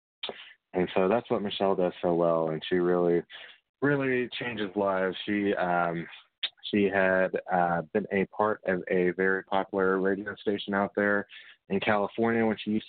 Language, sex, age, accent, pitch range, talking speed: English, male, 20-39, American, 100-125 Hz, 165 wpm